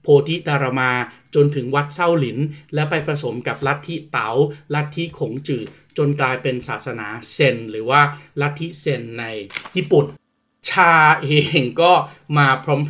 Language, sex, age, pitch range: Thai, male, 30-49, 130-165 Hz